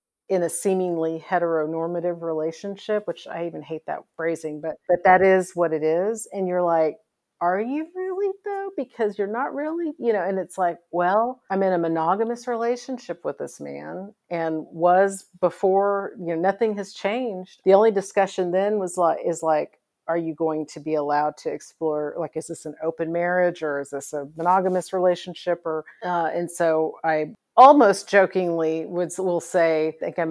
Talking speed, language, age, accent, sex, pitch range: 180 wpm, English, 50-69, American, female, 160-220 Hz